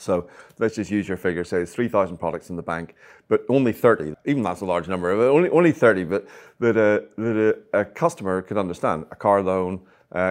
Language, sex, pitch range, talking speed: English, male, 90-110 Hz, 215 wpm